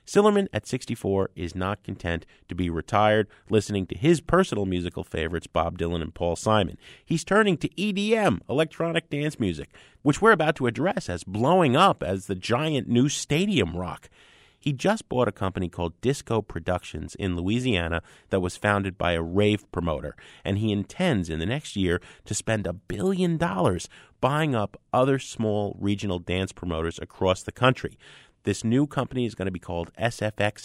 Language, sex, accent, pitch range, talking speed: English, male, American, 90-135 Hz, 175 wpm